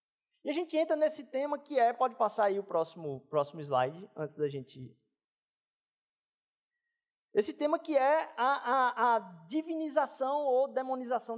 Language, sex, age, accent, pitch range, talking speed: Portuguese, male, 20-39, Brazilian, 200-290 Hz, 140 wpm